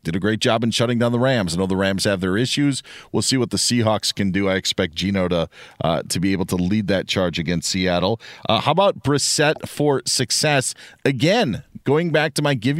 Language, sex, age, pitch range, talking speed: English, male, 40-59, 100-135 Hz, 230 wpm